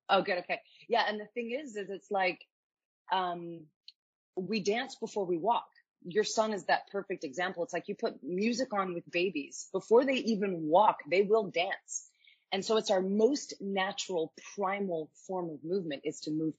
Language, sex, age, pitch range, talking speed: English, female, 30-49, 160-200 Hz, 185 wpm